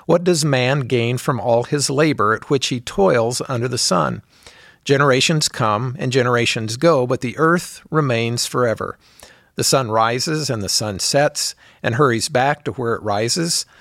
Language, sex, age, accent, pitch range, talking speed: English, male, 50-69, American, 125-155 Hz, 170 wpm